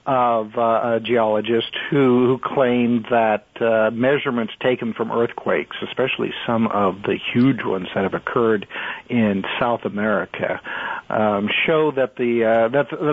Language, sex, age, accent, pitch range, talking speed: English, male, 60-79, American, 110-140 Hz, 140 wpm